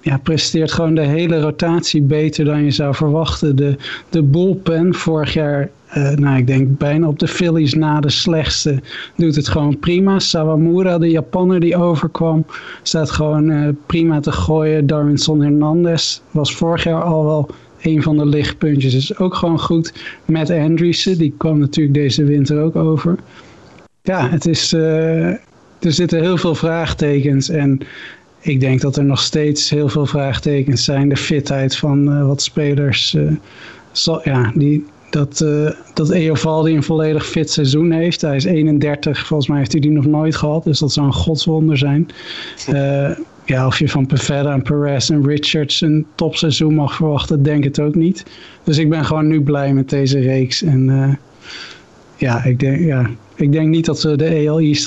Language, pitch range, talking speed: Dutch, 145-160 Hz, 180 wpm